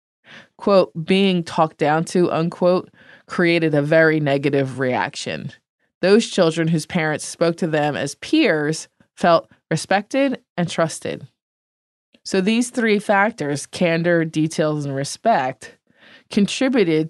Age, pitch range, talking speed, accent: 20-39, 150-190 Hz, 115 wpm, American